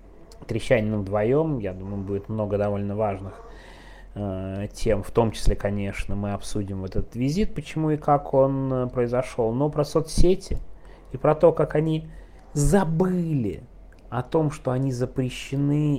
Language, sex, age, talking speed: Russian, male, 30-49, 145 wpm